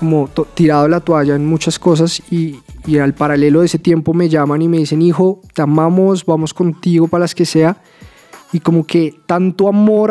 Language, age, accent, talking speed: Spanish, 20-39, Colombian, 200 wpm